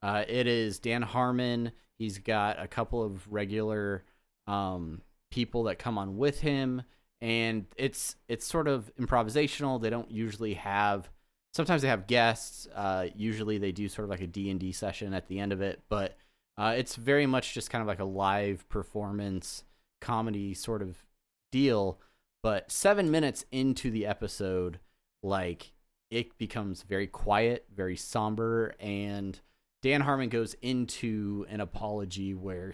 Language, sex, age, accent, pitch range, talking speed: English, male, 30-49, American, 95-120 Hz, 155 wpm